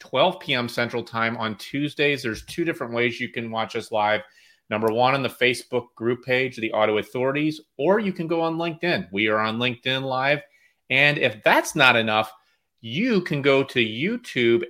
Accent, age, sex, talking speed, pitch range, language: American, 30-49, male, 190 wpm, 110-130 Hz, English